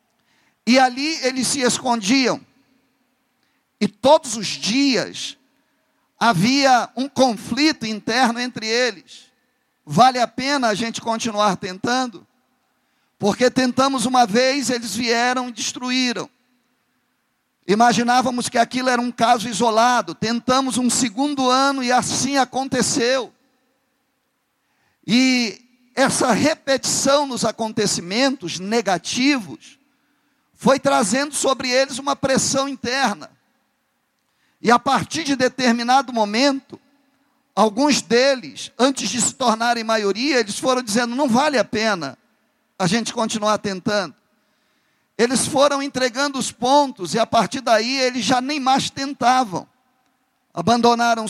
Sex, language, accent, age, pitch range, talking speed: male, Portuguese, Brazilian, 50-69, 230-270 Hz, 110 wpm